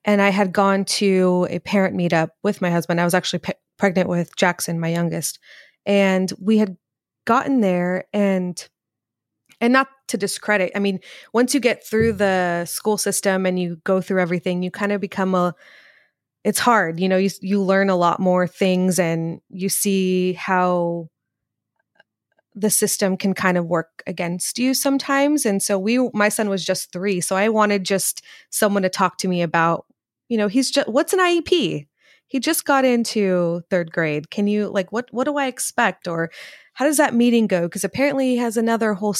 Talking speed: 185 wpm